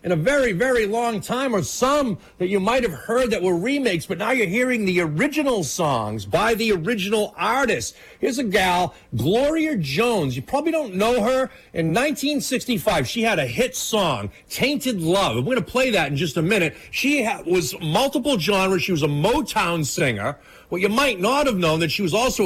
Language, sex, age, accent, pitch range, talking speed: English, male, 40-59, American, 175-250 Hz, 200 wpm